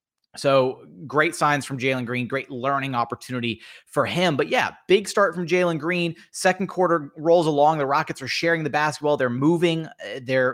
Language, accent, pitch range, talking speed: English, American, 130-165 Hz, 175 wpm